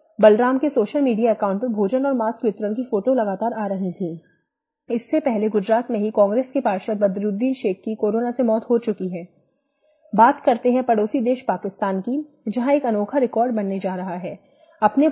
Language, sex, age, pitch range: Hindi, female, 30-49, 205-260 Hz